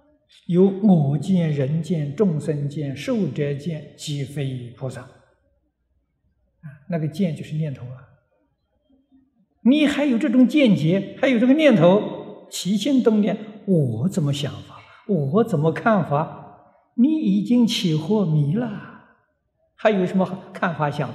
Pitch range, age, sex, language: 135-215 Hz, 60-79, male, Chinese